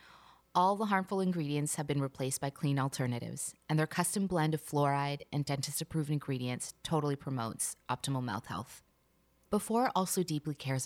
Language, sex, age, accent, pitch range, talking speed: English, female, 20-39, American, 135-170 Hz, 155 wpm